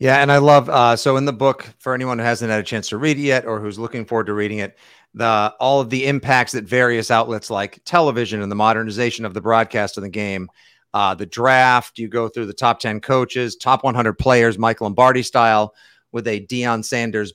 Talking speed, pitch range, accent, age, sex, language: 230 wpm, 110-135 Hz, American, 40-59, male, English